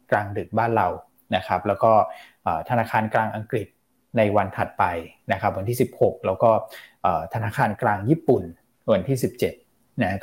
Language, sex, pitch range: Thai, male, 105-130 Hz